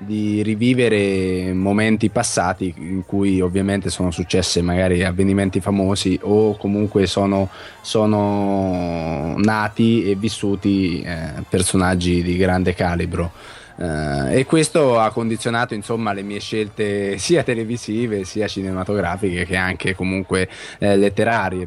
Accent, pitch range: native, 90-110 Hz